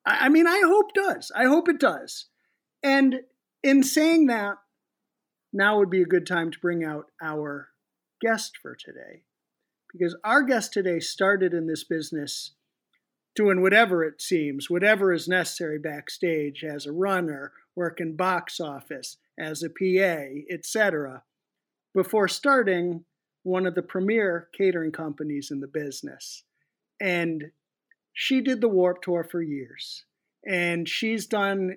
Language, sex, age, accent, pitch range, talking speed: English, male, 50-69, American, 155-200 Hz, 140 wpm